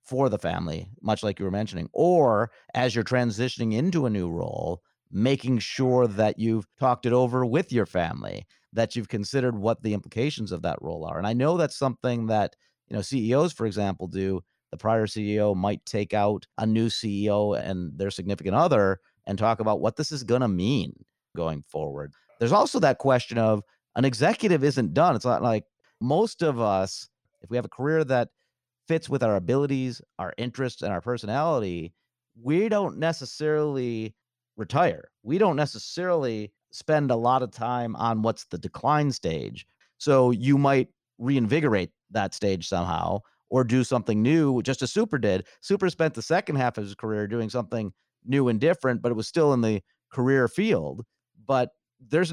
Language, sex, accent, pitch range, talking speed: English, male, American, 105-140 Hz, 180 wpm